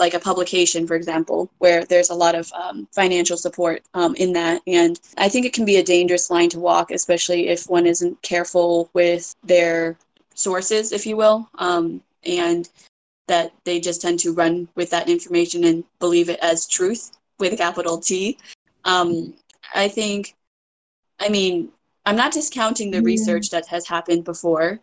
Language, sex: English, female